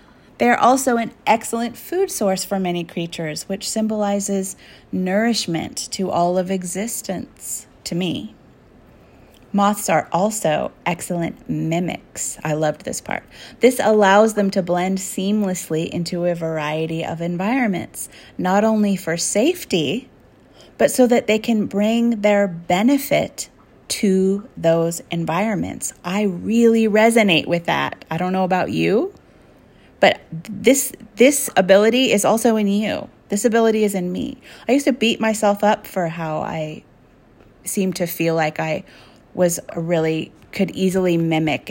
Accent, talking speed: American, 140 wpm